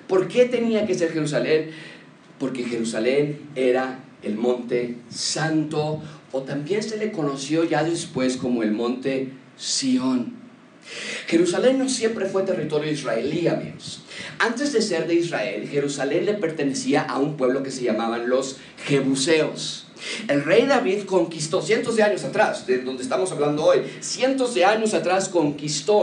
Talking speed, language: 150 wpm, Spanish